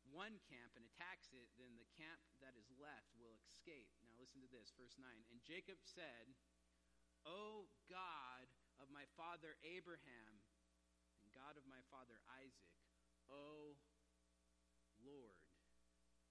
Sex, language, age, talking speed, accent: male, English, 40-59, 135 wpm, American